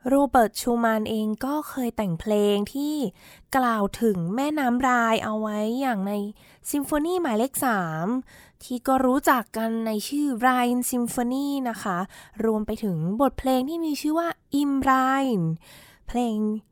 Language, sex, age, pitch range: Thai, female, 20-39, 215-270 Hz